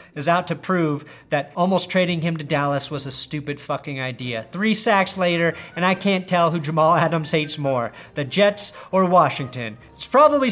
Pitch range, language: 150-205 Hz, English